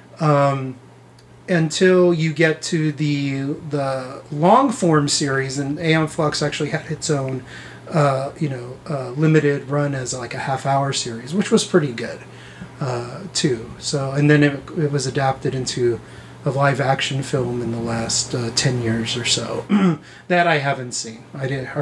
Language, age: English, 30-49